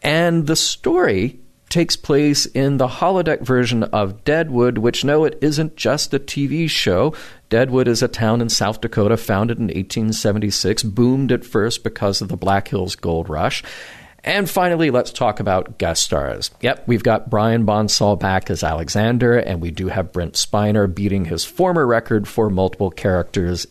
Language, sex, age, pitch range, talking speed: English, male, 40-59, 95-130 Hz, 170 wpm